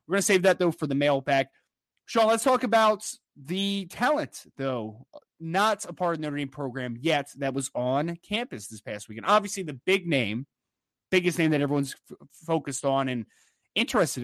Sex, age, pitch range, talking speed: male, 20-39, 140-180 Hz, 190 wpm